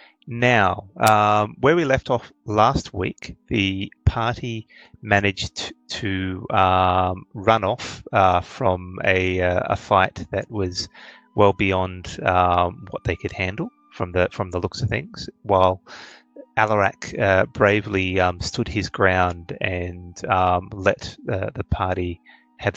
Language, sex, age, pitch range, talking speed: English, male, 30-49, 90-105 Hz, 135 wpm